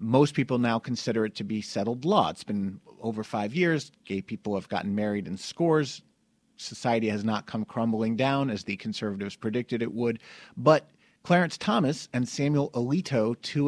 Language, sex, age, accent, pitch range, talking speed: English, male, 40-59, American, 120-170 Hz, 175 wpm